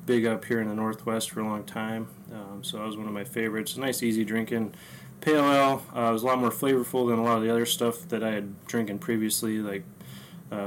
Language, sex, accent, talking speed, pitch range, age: English, male, American, 240 wpm, 110-130 Hz, 20-39